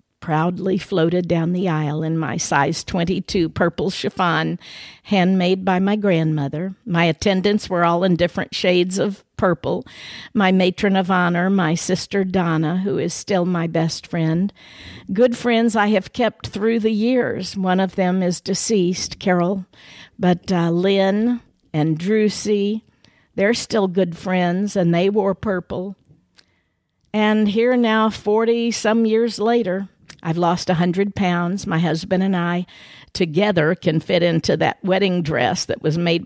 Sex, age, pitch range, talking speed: female, 50-69, 175-210 Hz, 145 wpm